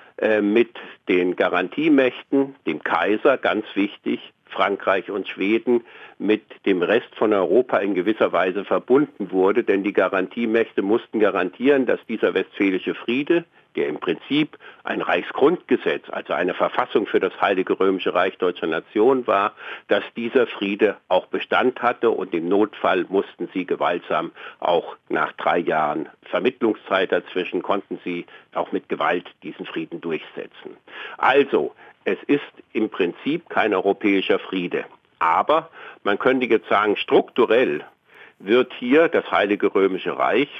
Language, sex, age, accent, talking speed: German, male, 50-69, German, 135 wpm